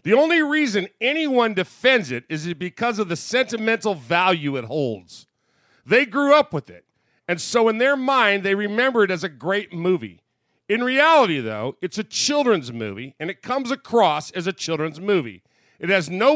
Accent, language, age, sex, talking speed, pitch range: American, English, 40-59, male, 180 wpm, 150-235 Hz